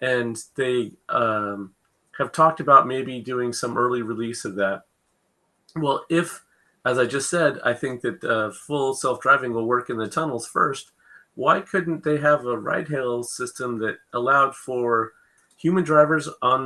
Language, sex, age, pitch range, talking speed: English, male, 30-49, 115-135 Hz, 160 wpm